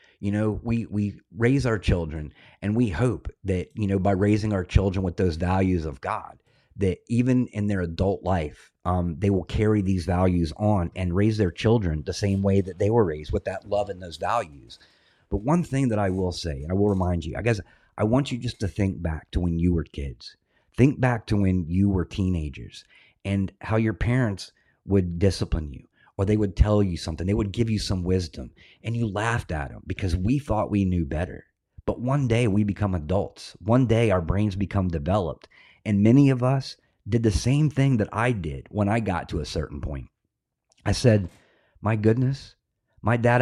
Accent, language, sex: American, English, male